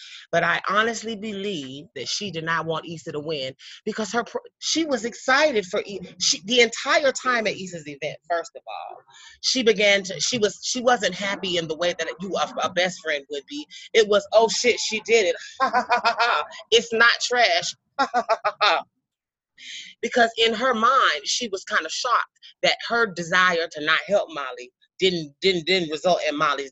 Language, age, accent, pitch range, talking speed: English, 30-49, American, 160-230 Hz, 175 wpm